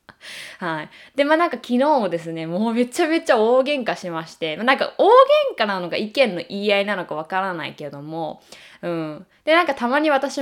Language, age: Japanese, 20-39